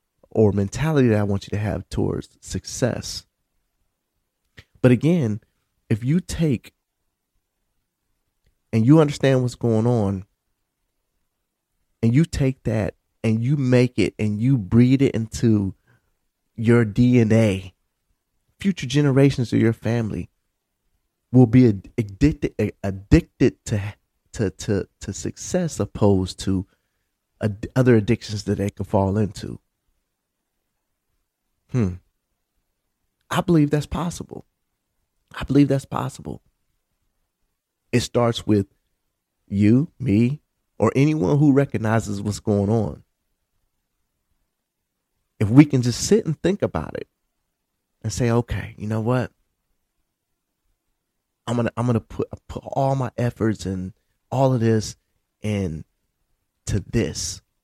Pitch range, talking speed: 100-125 Hz, 115 wpm